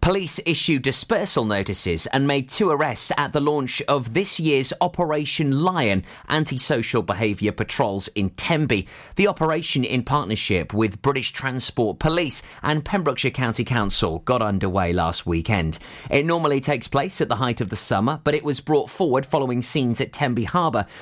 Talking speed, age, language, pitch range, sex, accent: 165 wpm, 30-49, English, 110-150 Hz, male, British